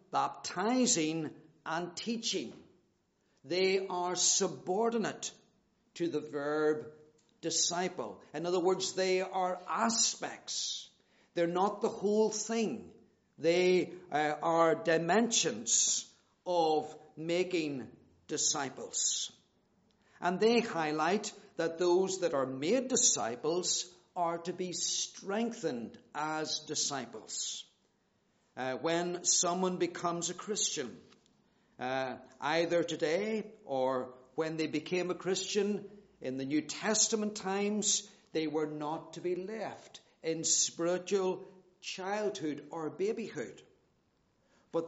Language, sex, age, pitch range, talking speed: English, male, 50-69, 160-205 Hz, 100 wpm